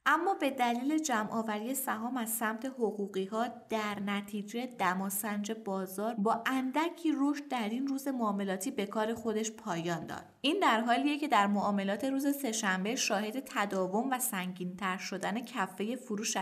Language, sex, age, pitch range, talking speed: Persian, female, 20-39, 200-265 Hz, 155 wpm